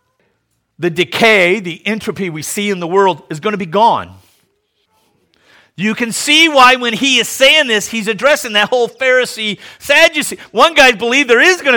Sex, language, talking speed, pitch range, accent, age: male, English, 180 wpm, 150-245 Hz, American, 50-69